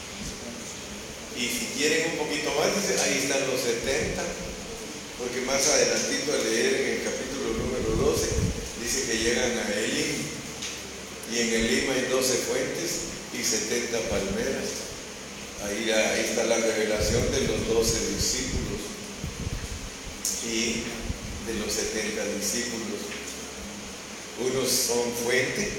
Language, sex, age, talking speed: Spanish, male, 40-59, 125 wpm